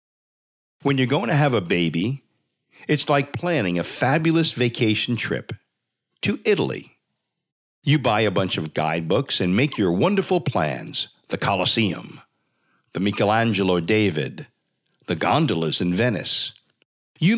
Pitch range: 95-145 Hz